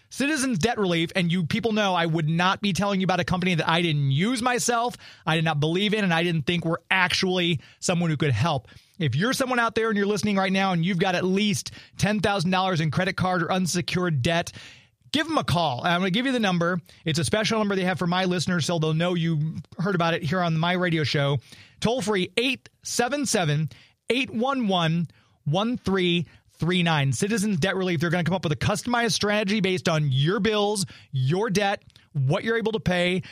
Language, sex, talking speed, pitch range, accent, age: English, male, 210 wpm, 160-205 Hz, American, 30-49